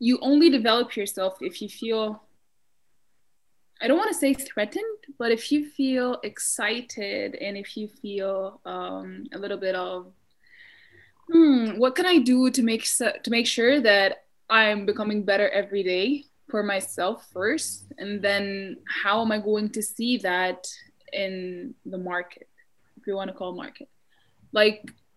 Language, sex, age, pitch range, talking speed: English, female, 10-29, 195-245 Hz, 155 wpm